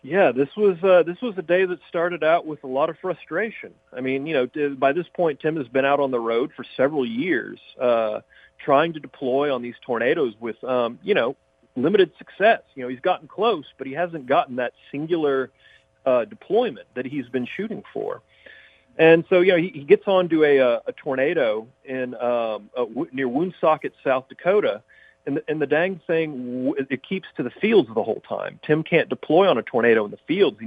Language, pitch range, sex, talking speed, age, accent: English, 130-180 Hz, male, 205 wpm, 40-59, American